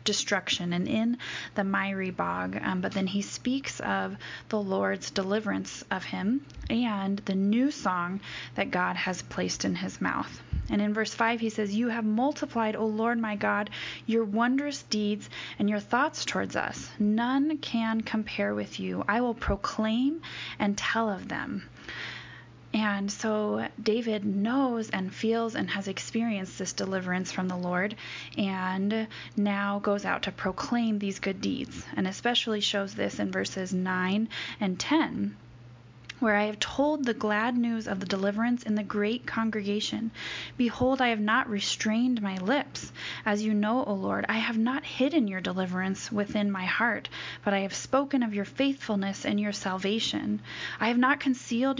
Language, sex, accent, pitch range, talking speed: English, female, American, 190-235 Hz, 165 wpm